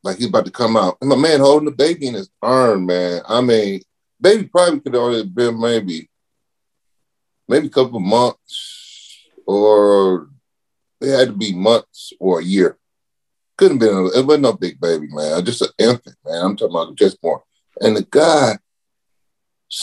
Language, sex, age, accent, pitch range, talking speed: English, male, 30-49, American, 105-140 Hz, 180 wpm